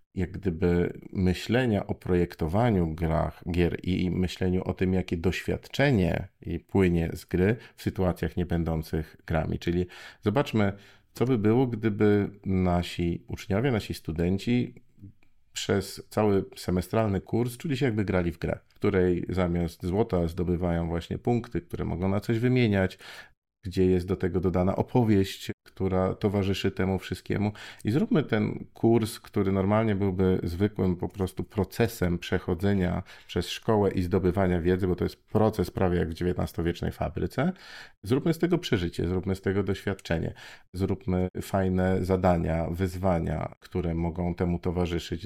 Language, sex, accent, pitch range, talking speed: Polish, male, native, 90-105 Hz, 140 wpm